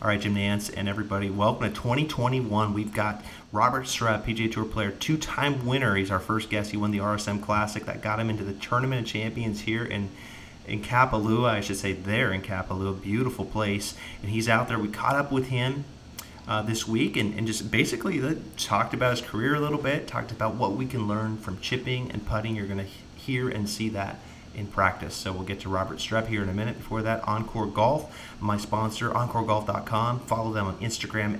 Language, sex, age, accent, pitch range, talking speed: English, male, 30-49, American, 100-115 Hz, 210 wpm